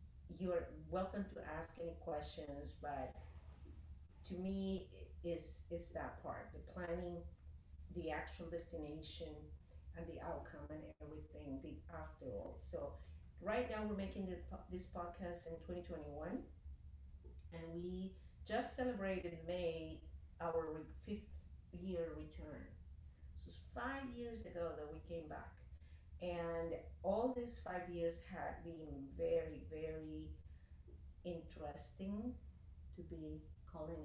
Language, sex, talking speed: English, female, 120 wpm